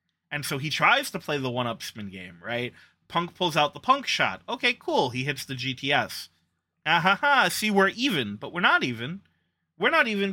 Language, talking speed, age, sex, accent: English, 210 wpm, 30-49, male, American